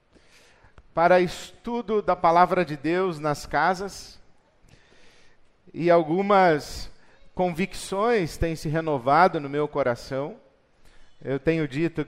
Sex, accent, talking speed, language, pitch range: male, Brazilian, 100 wpm, Portuguese, 145-175 Hz